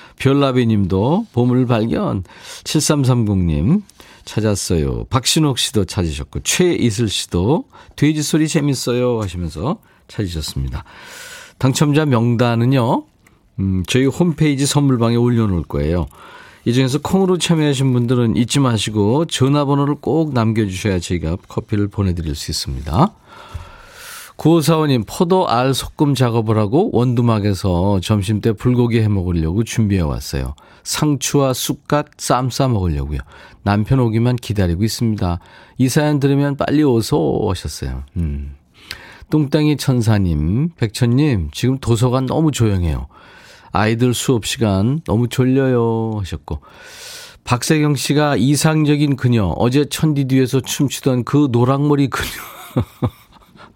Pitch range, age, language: 100-145 Hz, 40-59, Korean